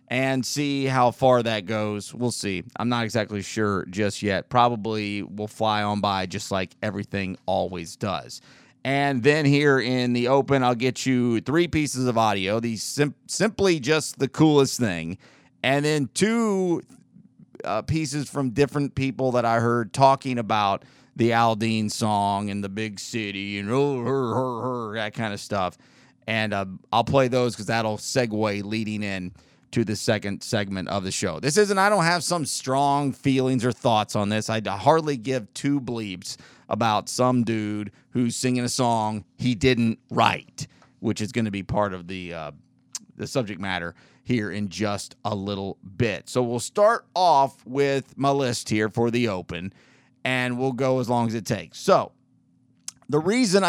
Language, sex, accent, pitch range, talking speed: English, male, American, 105-135 Hz, 175 wpm